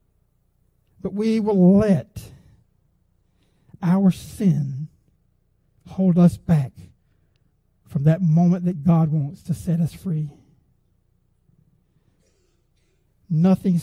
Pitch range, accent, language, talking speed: 105-175 Hz, American, English, 85 wpm